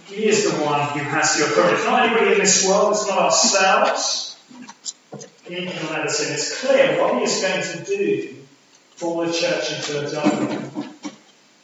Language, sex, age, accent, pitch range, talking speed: English, male, 30-49, British, 145-215 Hz, 175 wpm